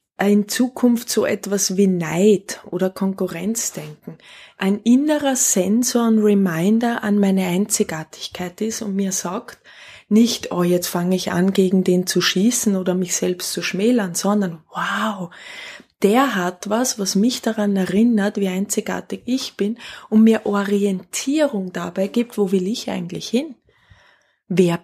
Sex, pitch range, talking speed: female, 190-230 Hz, 145 wpm